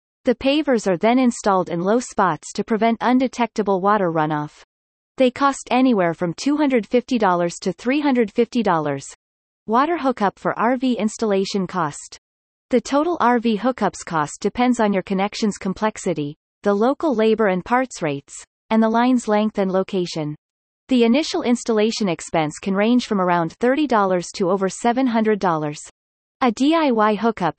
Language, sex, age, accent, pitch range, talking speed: English, female, 30-49, American, 180-245 Hz, 135 wpm